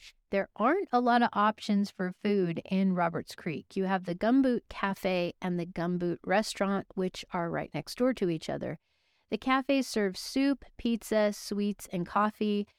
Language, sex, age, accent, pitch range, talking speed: English, female, 40-59, American, 180-215 Hz, 170 wpm